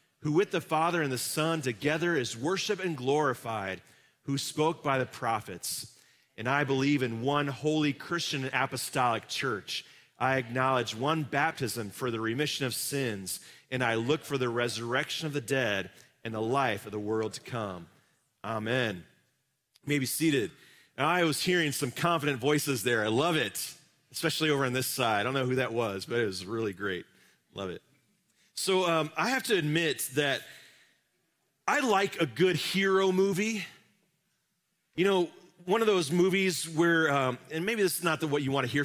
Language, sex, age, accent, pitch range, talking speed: English, male, 40-59, American, 130-180 Hz, 180 wpm